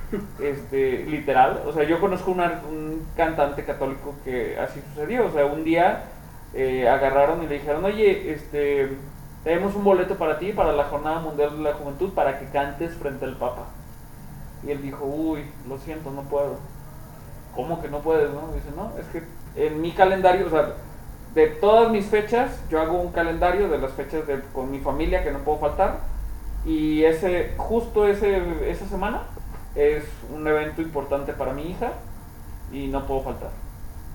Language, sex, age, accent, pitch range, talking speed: Spanish, male, 30-49, Mexican, 140-175 Hz, 175 wpm